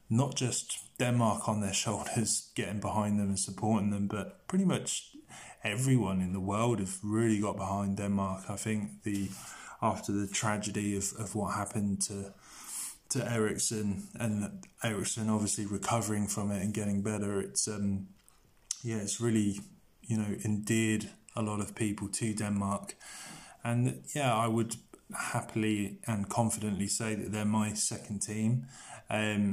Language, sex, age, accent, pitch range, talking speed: English, male, 20-39, British, 100-115 Hz, 150 wpm